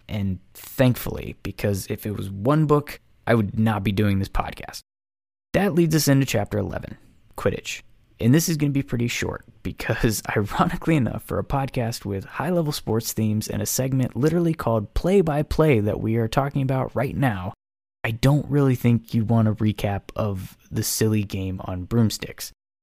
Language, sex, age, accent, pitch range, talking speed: English, male, 20-39, American, 100-135 Hz, 180 wpm